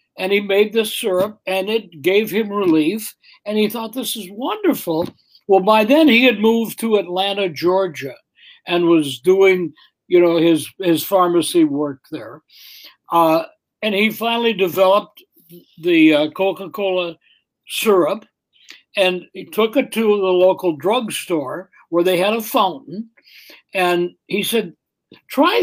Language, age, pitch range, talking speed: English, 60-79, 180-230 Hz, 145 wpm